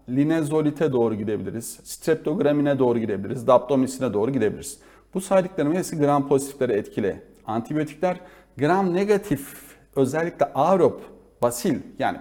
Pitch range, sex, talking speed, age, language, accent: 130-160 Hz, male, 105 wpm, 40-59, Turkish, native